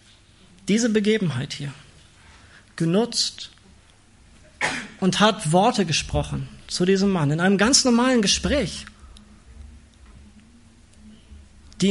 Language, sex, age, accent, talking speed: German, male, 30-49, German, 85 wpm